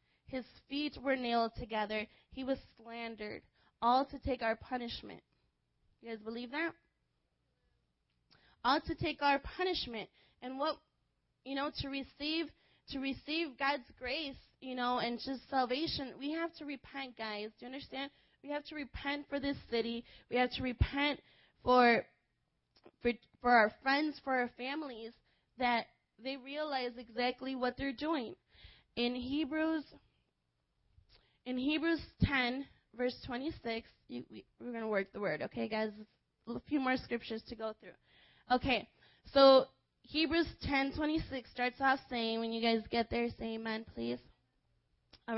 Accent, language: American, English